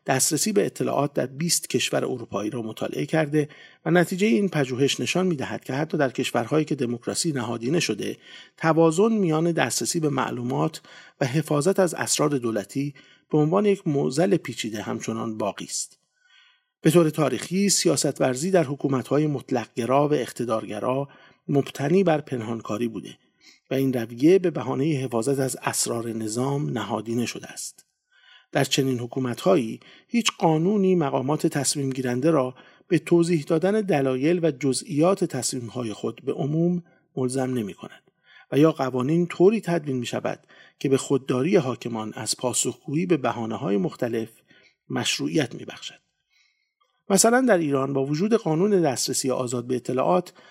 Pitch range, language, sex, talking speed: 125-170 Hz, English, male, 140 wpm